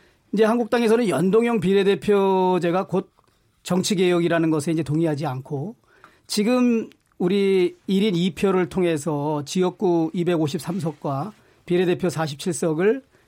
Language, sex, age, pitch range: Korean, male, 40-59, 160-210 Hz